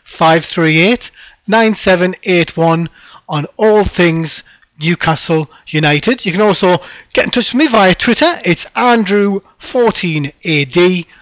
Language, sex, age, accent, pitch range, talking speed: English, male, 30-49, British, 160-210 Hz, 135 wpm